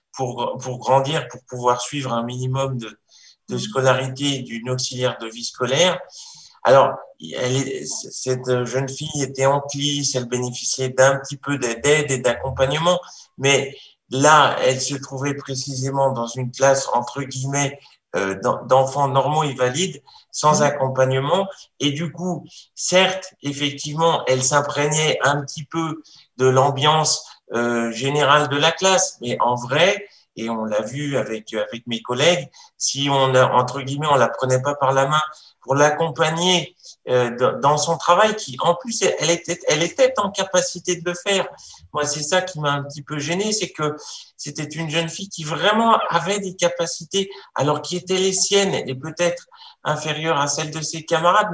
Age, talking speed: 50-69, 165 wpm